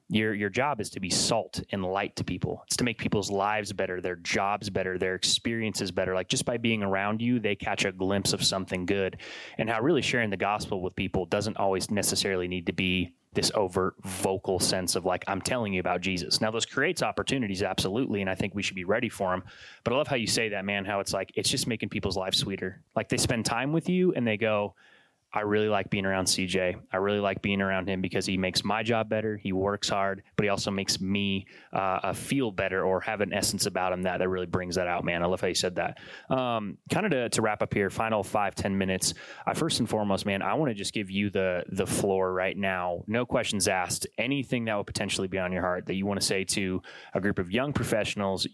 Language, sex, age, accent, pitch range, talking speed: English, male, 20-39, American, 95-110 Hz, 245 wpm